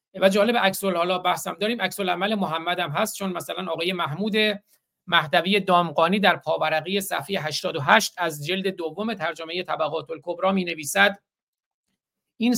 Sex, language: male, Persian